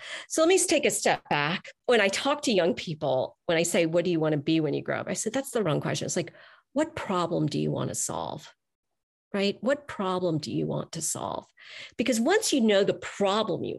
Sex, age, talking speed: female, 40-59, 245 wpm